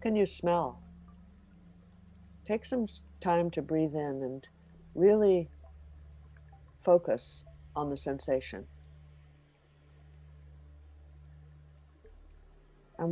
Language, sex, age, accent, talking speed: English, female, 60-79, American, 75 wpm